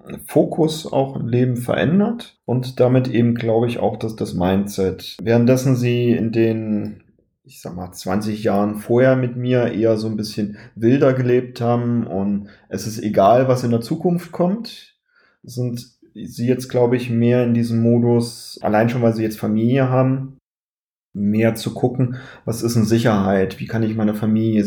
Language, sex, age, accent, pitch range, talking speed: German, male, 30-49, German, 110-125 Hz, 170 wpm